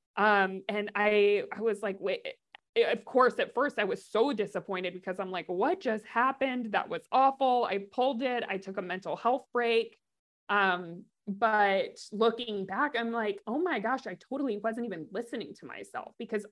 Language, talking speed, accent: English, 180 wpm, American